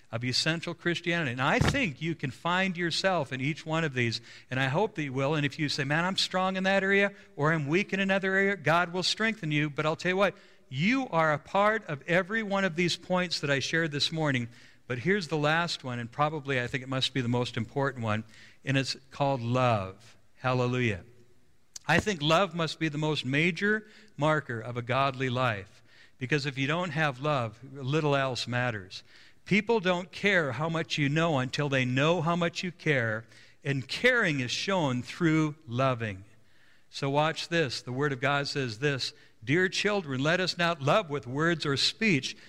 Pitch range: 130-175 Hz